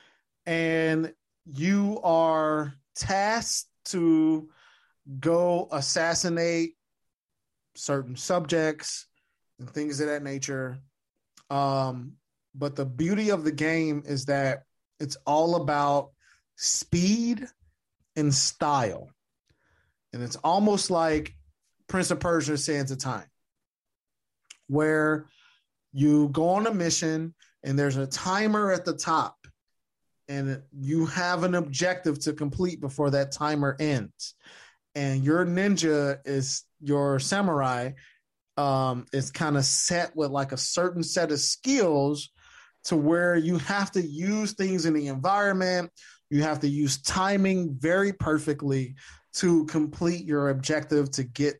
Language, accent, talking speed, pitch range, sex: English, American, 120 wpm, 140-175 Hz, male